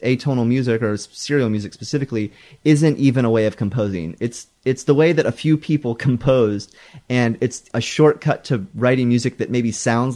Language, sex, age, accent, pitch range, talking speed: English, male, 30-49, American, 105-135 Hz, 185 wpm